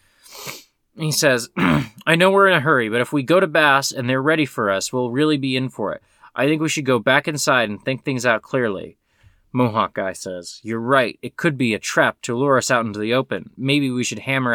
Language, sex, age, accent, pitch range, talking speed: English, male, 20-39, American, 105-150 Hz, 240 wpm